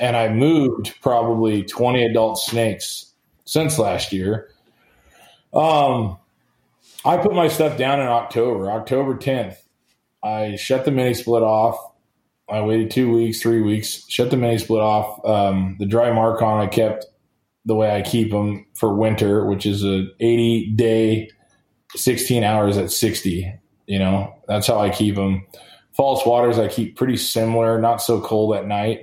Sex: male